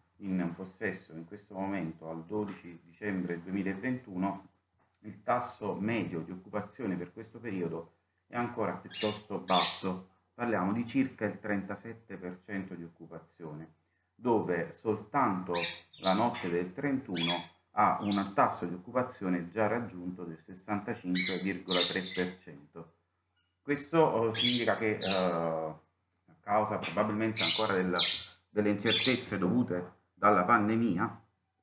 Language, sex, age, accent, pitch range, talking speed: Italian, male, 40-59, native, 90-110 Hz, 110 wpm